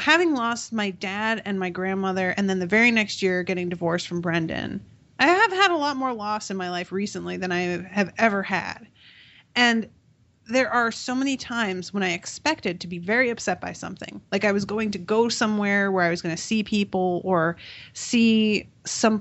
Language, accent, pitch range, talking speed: English, American, 185-245 Hz, 205 wpm